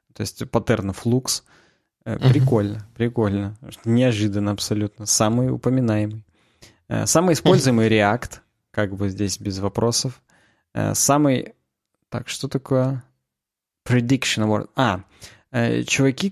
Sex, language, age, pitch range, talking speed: male, Russian, 20-39, 105-125 Hz, 95 wpm